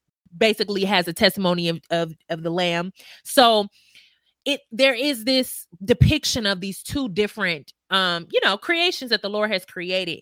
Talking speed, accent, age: 165 wpm, American, 20-39